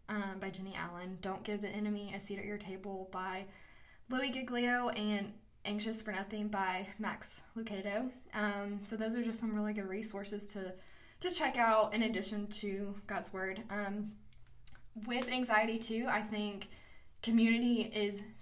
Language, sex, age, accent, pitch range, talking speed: English, female, 10-29, American, 195-220 Hz, 160 wpm